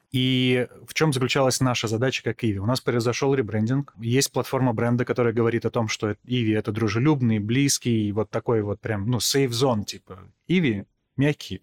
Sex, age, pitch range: male, 20-39, 110-130 Hz